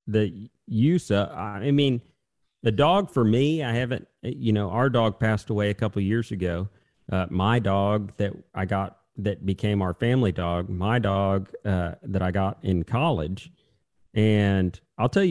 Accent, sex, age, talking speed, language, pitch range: American, male, 40-59, 175 wpm, English, 100-130 Hz